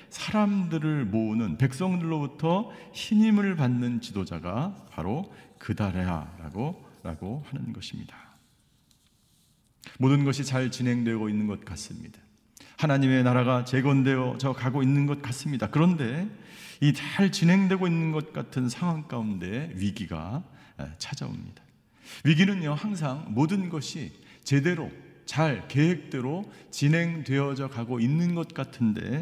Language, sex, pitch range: Korean, male, 110-155 Hz